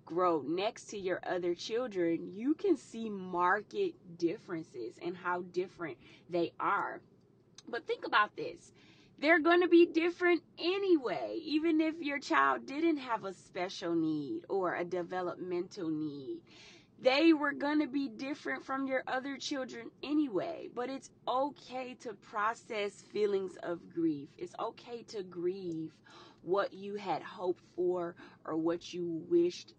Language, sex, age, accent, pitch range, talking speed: English, female, 20-39, American, 175-275 Hz, 145 wpm